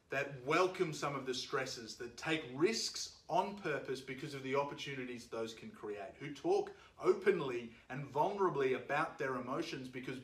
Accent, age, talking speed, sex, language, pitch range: Australian, 30-49, 160 wpm, male, English, 130-170 Hz